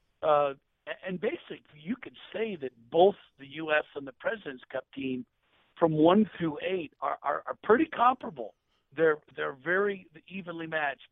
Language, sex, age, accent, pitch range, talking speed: English, male, 50-69, American, 135-175 Hz, 155 wpm